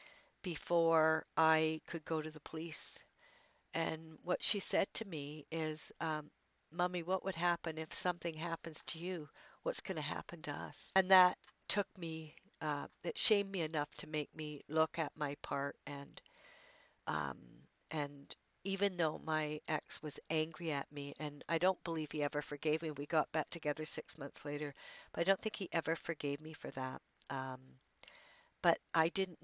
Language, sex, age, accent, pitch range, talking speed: English, female, 60-79, American, 155-175 Hz, 175 wpm